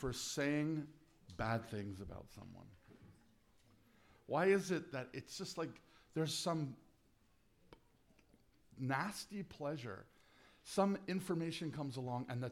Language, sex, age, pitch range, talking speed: English, male, 50-69, 120-160 Hz, 110 wpm